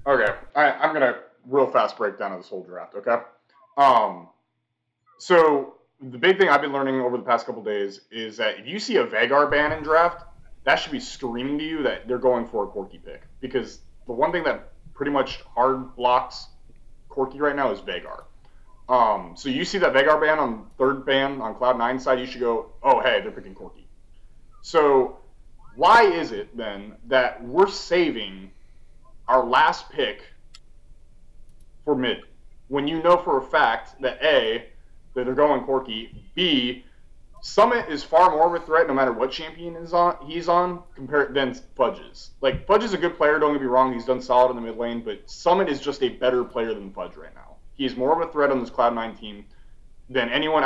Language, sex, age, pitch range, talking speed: English, male, 30-49, 120-155 Hz, 200 wpm